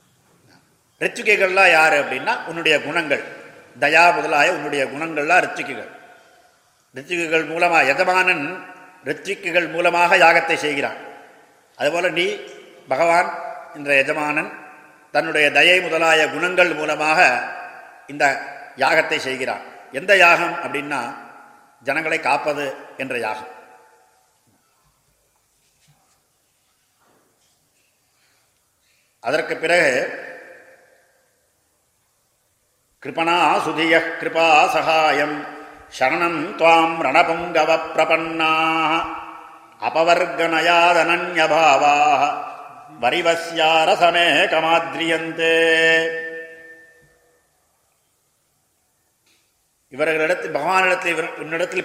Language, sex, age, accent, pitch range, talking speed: Tamil, male, 50-69, native, 155-175 Hz, 45 wpm